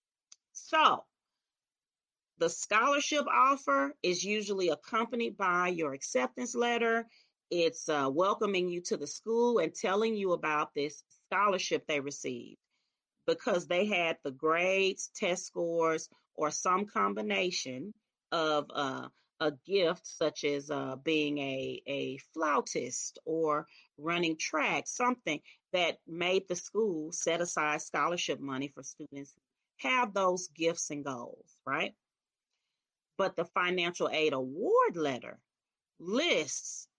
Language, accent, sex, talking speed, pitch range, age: English, American, female, 120 wpm, 150-200 Hz, 40-59